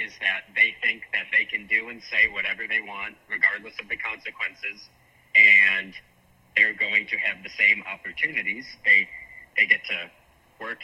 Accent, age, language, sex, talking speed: American, 40-59, English, male, 165 wpm